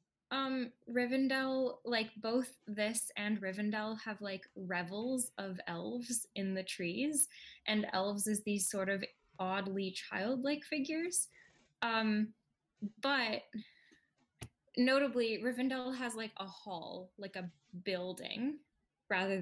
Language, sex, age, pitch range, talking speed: English, female, 10-29, 180-220 Hz, 110 wpm